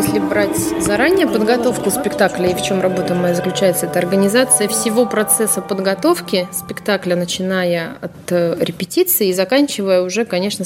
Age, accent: 20-39, native